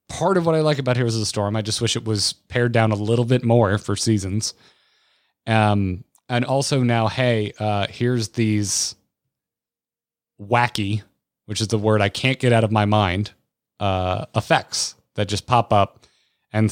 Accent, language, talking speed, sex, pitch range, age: American, English, 180 wpm, male, 105-130 Hz, 30-49